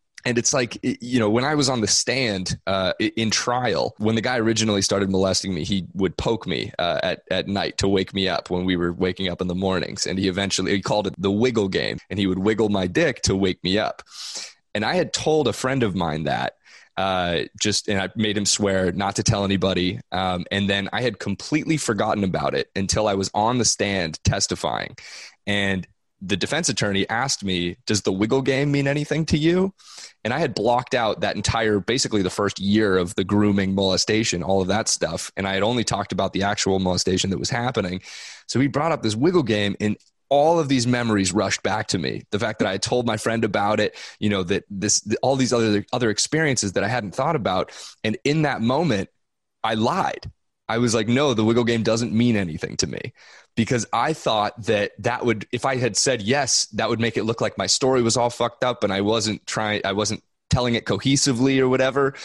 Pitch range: 95-120 Hz